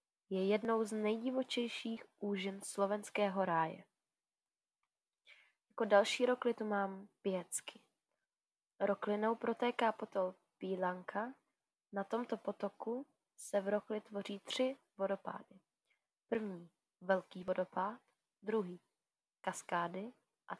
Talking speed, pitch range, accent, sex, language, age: 90 wpm, 190-230 Hz, native, female, Czech, 20-39